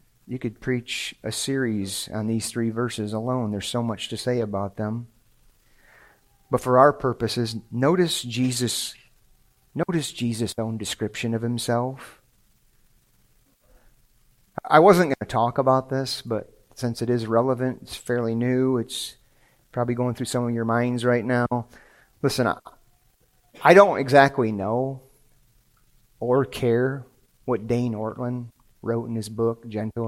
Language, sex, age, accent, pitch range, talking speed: English, male, 40-59, American, 115-130 Hz, 140 wpm